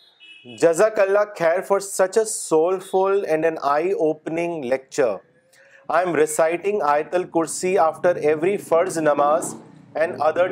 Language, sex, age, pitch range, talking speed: Urdu, male, 30-49, 155-190 Hz, 120 wpm